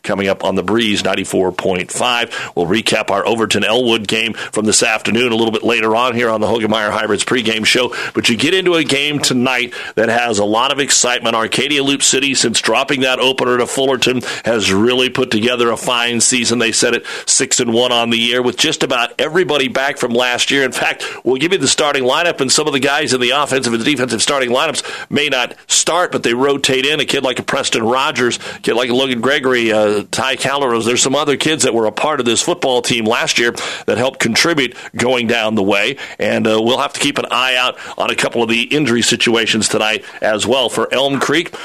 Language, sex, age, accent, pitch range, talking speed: English, male, 40-59, American, 115-135 Hz, 225 wpm